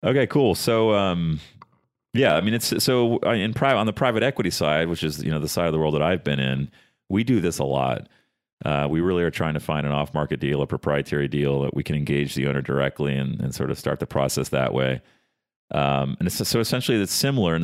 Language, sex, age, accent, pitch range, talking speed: English, male, 40-59, American, 70-85 Hz, 240 wpm